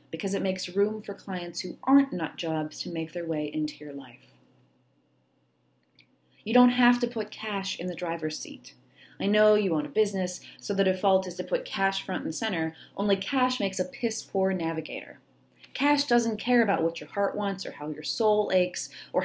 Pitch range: 165-205 Hz